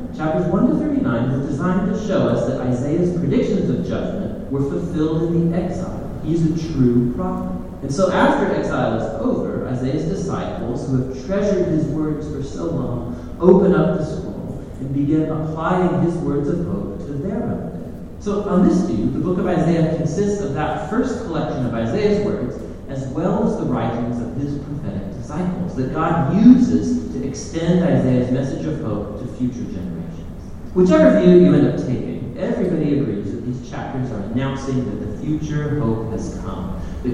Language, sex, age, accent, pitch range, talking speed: English, male, 40-59, American, 120-170 Hz, 180 wpm